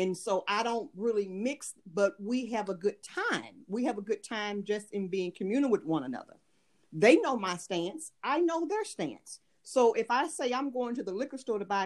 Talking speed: 225 wpm